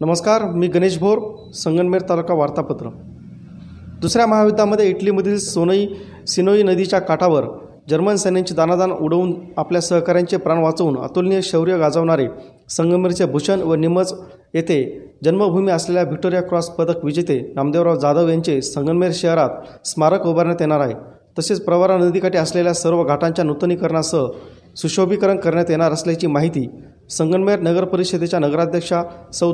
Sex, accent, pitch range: male, native, 155-185 Hz